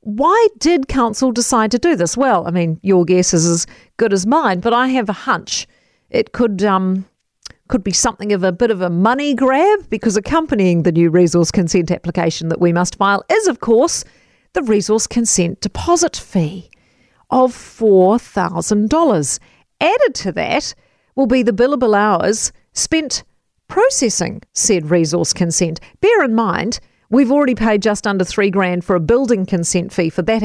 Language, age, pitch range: English, 50-69, 180-240 Hz